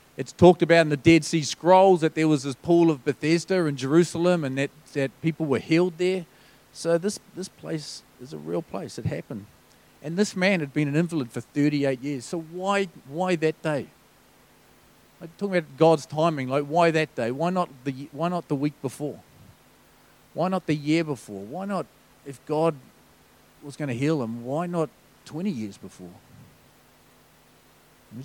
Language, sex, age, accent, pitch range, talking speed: English, male, 40-59, Australian, 130-170 Hz, 185 wpm